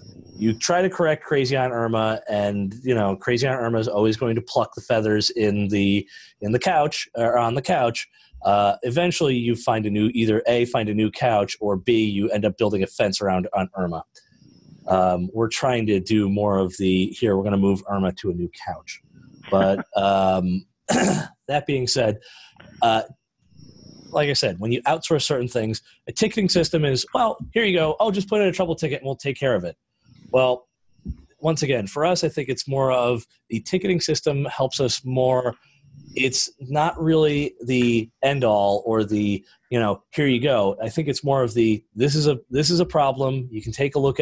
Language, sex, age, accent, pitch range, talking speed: English, male, 30-49, American, 105-140 Hz, 205 wpm